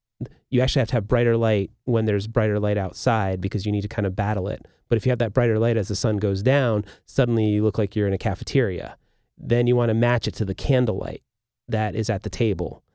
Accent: American